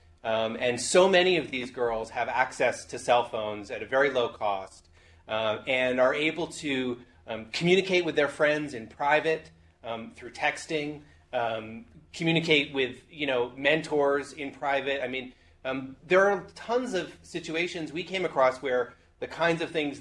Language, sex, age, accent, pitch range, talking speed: English, male, 30-49, American, 115-150 Hz, 170 wpm